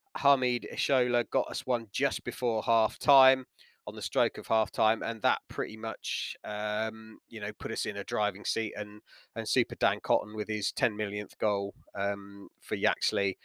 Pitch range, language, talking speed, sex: 110-140 Hz, English, 180 wpm, male